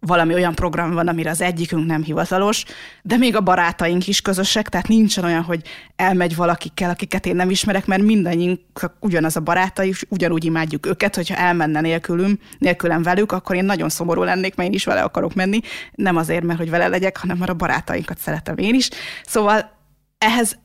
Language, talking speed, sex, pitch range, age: Hungarian, 185 wpm, female, 165-200 Hz, 20-39